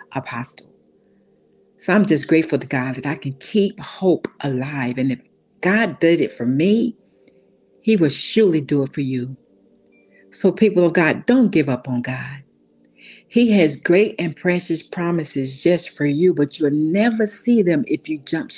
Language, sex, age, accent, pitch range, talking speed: English, female, 60-79, American, 135-195 Hz, 170 wpm